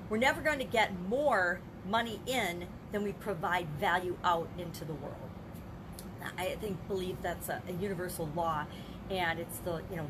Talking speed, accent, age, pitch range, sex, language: 170 wpm, American, 40-59, 180-230 Hz, female, English